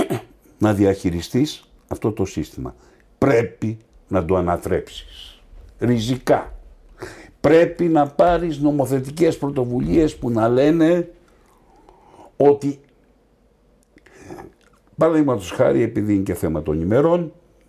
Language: Greek